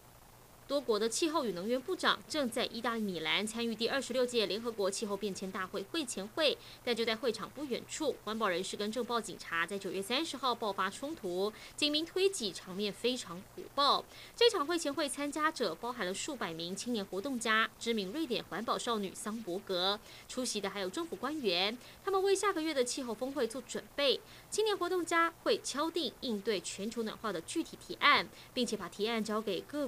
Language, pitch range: Chinese, 200-305 Hz